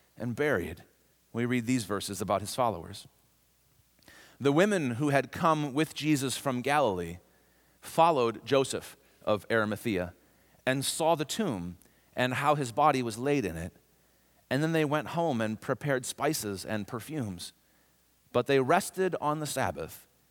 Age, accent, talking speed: 40-59, American, 150 wpm